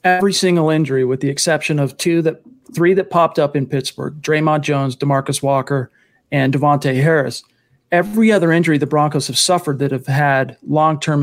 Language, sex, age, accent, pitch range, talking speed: English, male, 40-59, American, 140-175 Hz, 175 wpm